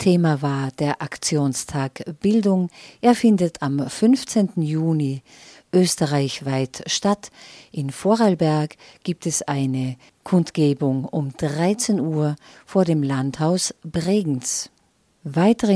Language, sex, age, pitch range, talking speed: German, female, 50-69, 140-175 Hz, 100 wpm